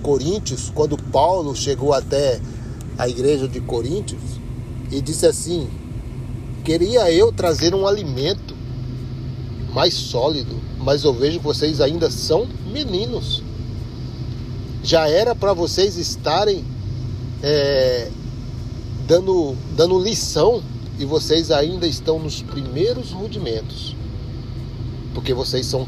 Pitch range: 120-160 Hz